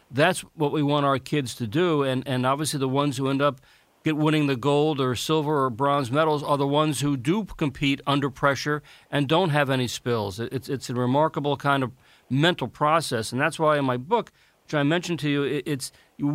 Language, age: English, 40-59